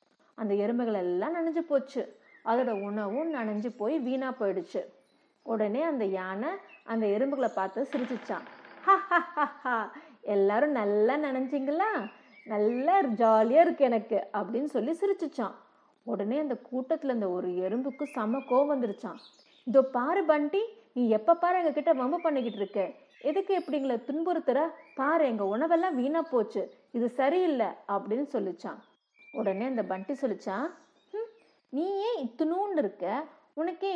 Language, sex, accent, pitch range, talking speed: Tamil, female, native, 215-310 Hz, 120 wpm